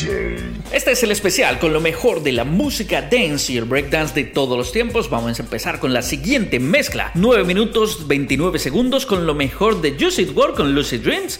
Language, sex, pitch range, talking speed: Spanish, male, 140-215 Hz, 200 wpm